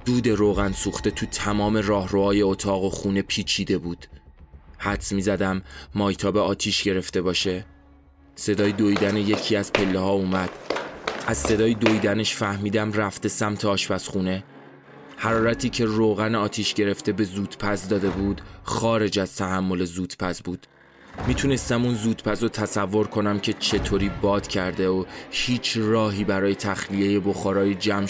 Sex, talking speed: male, 130 wpm